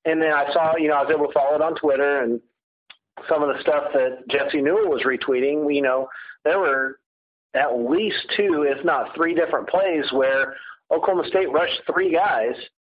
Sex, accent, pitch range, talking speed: male, American, 135-175 Hz, 195 wpm